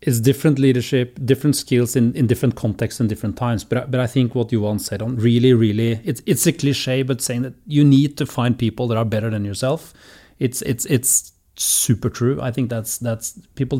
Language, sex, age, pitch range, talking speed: English, male, 30-49, 120-150 Hz, 220 wpm